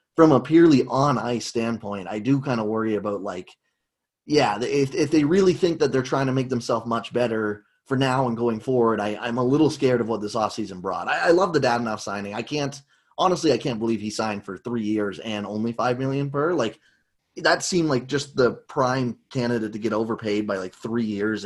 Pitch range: 105-135 Hz